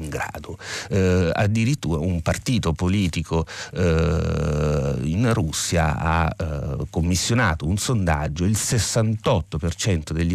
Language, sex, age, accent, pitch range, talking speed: Italian, male, 30-49, native, 85-110 Hz, 95 wpm